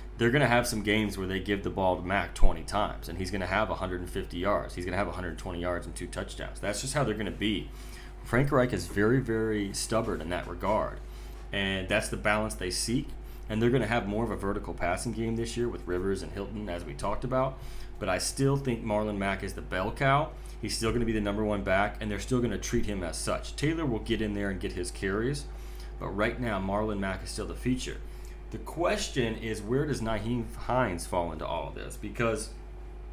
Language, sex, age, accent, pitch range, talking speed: English, male, 30-49, American, 95-120 Hz, 240 wpm